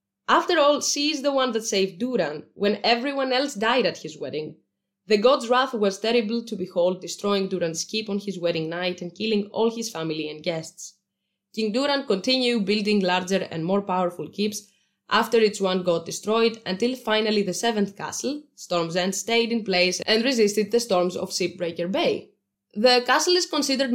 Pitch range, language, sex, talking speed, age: 180-250 Hz, English, female, 180 wpm, 20-39